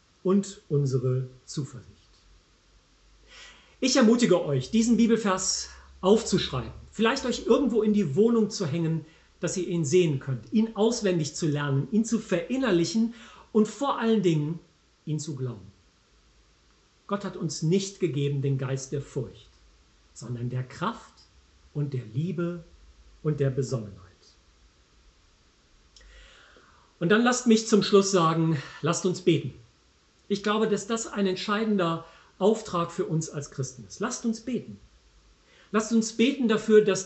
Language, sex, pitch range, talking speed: German, male, 135-205 Hz, 135 wpm